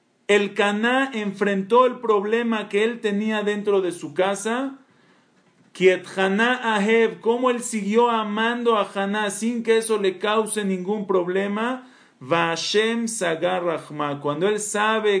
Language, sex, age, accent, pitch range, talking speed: Spanish, male, 40-59, Mexican, 195-240 Hz, 115 wpm